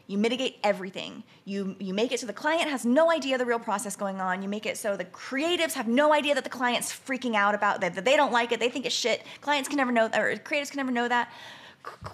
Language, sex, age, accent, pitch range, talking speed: English, female, 20-39, American, 205-285 Hz, 260 wpm